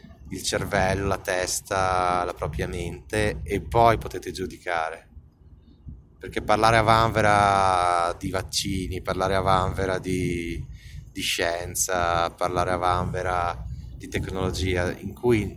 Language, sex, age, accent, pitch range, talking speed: Italian, male, 20-39, native, 85-110 Hz, 115 wpm